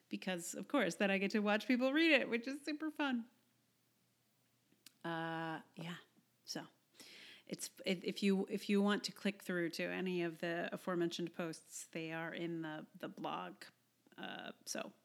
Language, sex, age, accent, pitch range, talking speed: English, female, 40-59, American, 175-235 Hz, 165 wpm